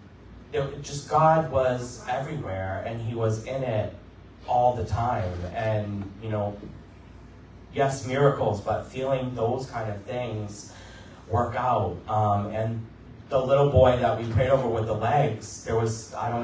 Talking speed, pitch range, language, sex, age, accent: 150 wpm, 105-130 Hz, English, male, 30-49, American